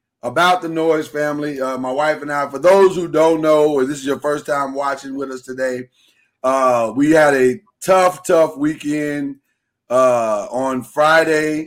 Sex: male